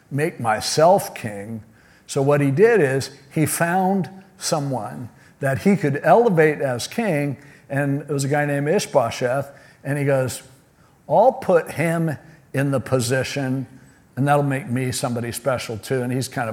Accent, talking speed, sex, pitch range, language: American, 155 wpm, male, 130-155 Hz, English